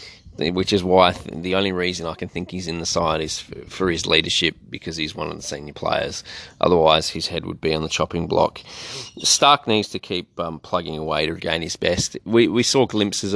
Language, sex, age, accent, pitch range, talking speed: English, male, 20-39, Australian, 90-105 Hz, 220 wpm